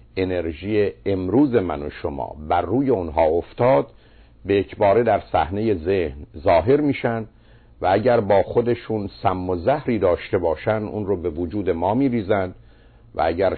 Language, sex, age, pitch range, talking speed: Persian, male, 50-69, 90-120 Hz, 145 wpm